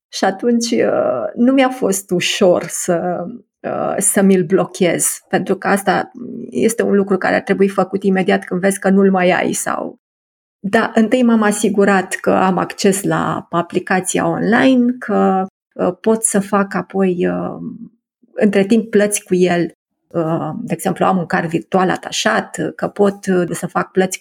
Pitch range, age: 180-230 Hz, 30-49